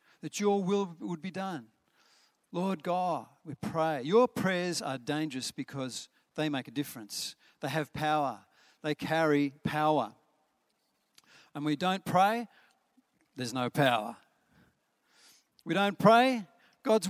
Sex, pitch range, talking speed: male, 130-165 Hz, 125 wpm